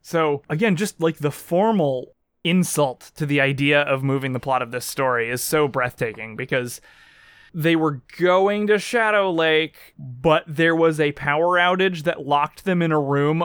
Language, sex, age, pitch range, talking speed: English, male, 20-39, 150-190 Hz, 175 wpm